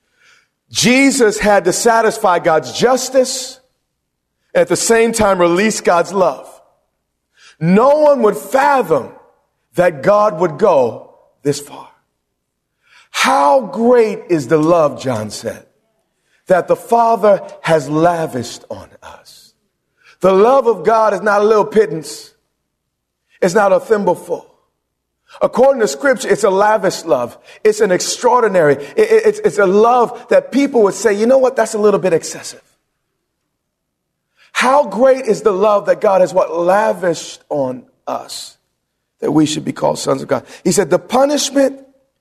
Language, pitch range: English, 170-260 Hz